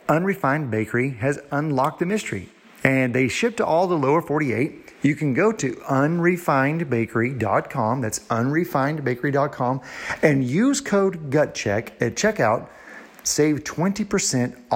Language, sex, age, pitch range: English, male, 40-59, 115-155 Hz